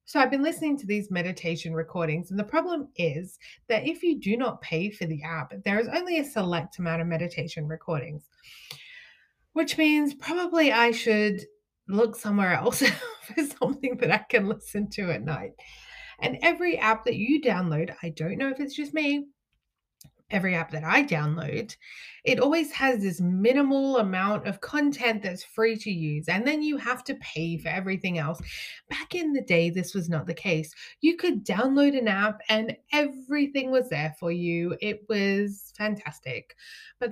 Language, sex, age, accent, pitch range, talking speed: English, female, 30-49, Australian, 185-275 Hz, 180 wpm